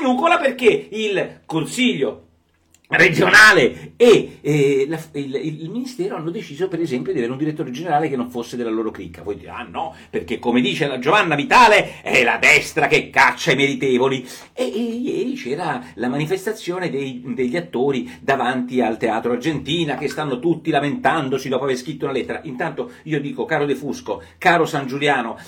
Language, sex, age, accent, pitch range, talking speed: Italian, male, 40-59, native, 140-200 Hz, 170 wpm